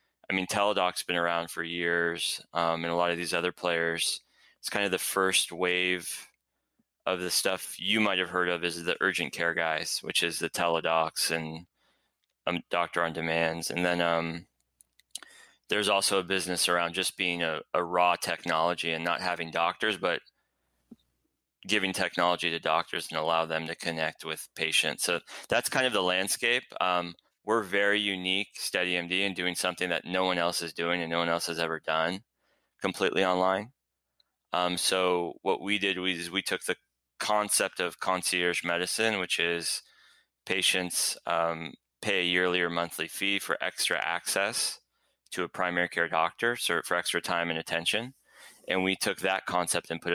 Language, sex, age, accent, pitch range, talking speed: English, male, 20-39, American, 85-90 Hz, 175 wpm